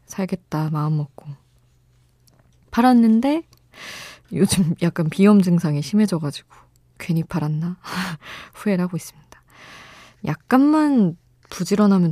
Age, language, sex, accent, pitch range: 20-39, Korean, female, native, 145-185 Hz